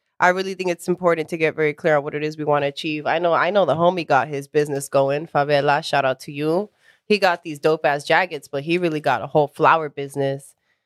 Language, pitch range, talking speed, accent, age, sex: English, 150-230 Hz, 250 wpm, American, 20-39, female